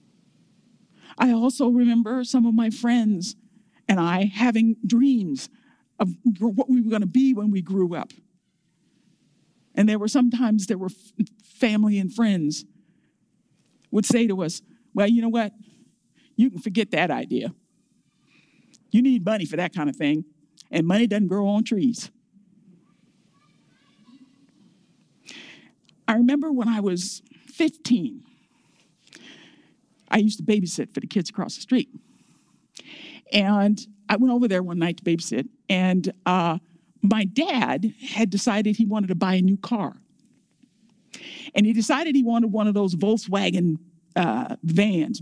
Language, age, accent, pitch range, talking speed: English, 50-69, American, 195-245 Hz, 140 wpm